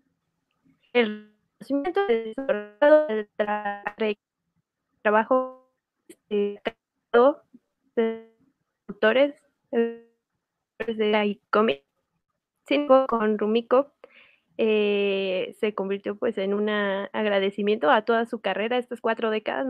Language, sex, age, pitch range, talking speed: Spanish, female, 20-39, 210-255 Hz, 80 wpm